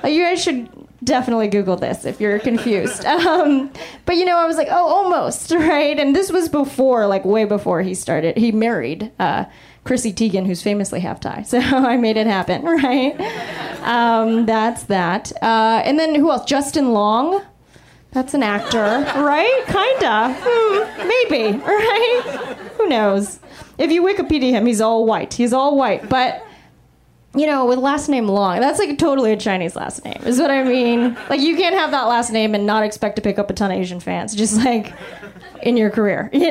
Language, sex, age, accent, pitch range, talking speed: English, female, 20-39, American, 215-290 Hz, 185 wpm